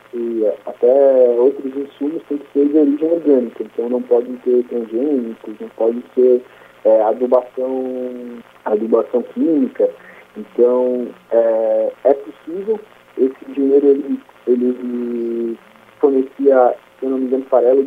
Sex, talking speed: male, 120 wpm